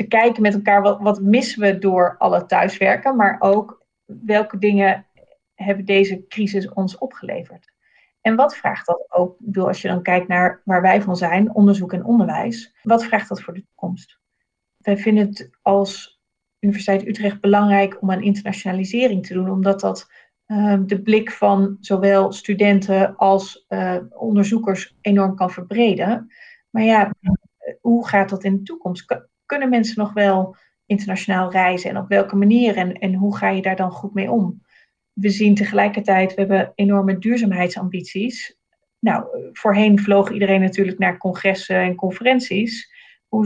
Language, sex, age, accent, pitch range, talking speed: Dutch, female, 40-59, Dutch, 190-220 Hz, 155 wpm